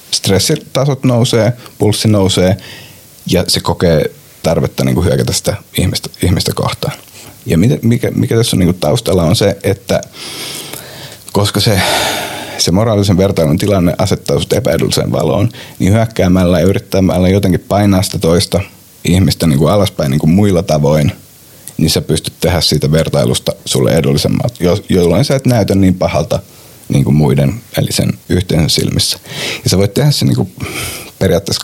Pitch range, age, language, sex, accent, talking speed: 95-120 Hz, 30-49, Finnish, male, native, 150 wpm